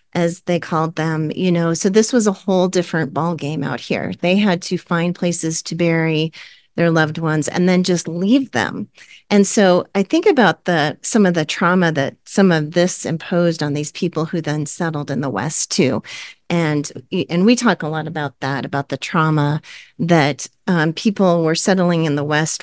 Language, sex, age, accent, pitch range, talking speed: English, female, 40-59, American, 155-185 Hz, 200 wpm